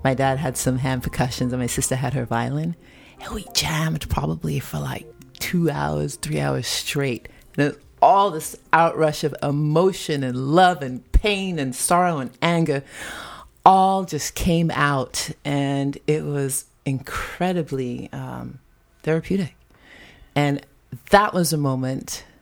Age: 30-49